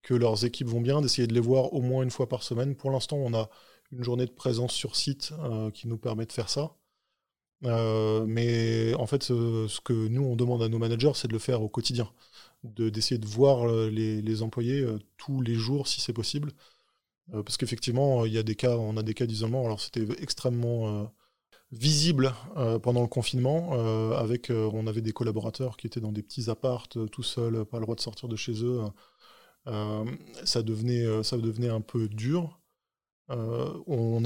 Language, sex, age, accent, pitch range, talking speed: French, male, 20-39, French, 110-130 Hz, 205 wpm